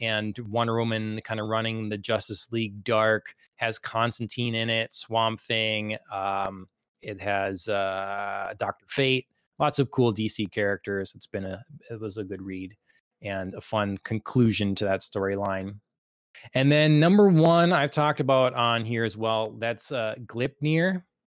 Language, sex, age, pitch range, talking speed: English, male, 20-39, 110-140 Hz, 160 wpm